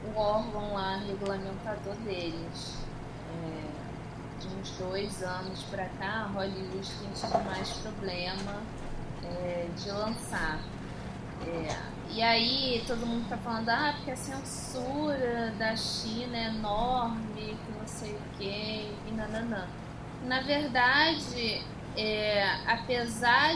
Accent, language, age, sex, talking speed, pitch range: Brazilian, Portuguese, 20-39, female, 120 wpm, 175-225 Hz